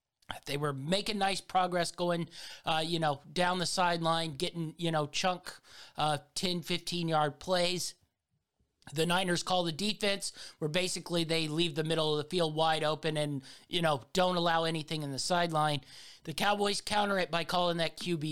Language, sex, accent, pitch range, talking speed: English, male, American, 160-185 Hz, 175 wpm